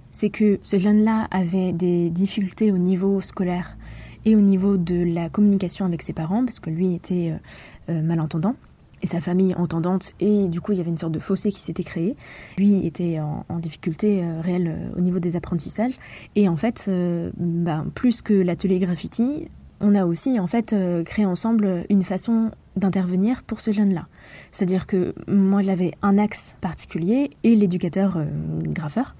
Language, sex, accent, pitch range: French, female, French, 175-210 Hz